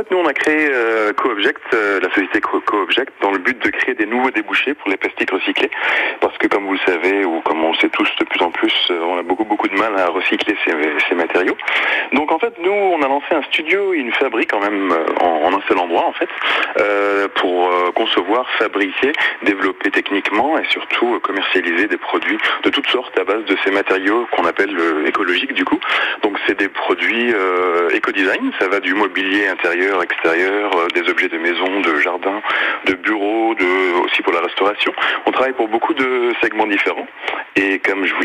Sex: male